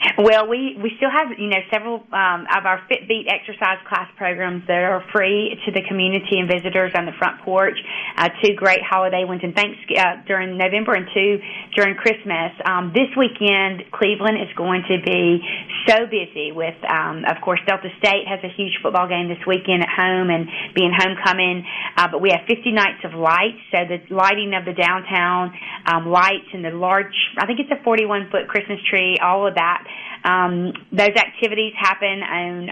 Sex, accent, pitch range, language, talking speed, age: female, American, 180-205 Hz, English, 190 wpm, 30-49